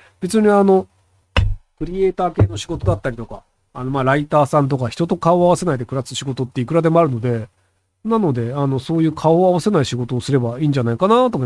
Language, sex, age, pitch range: Japanese, male, 40-59, 135-215 Hz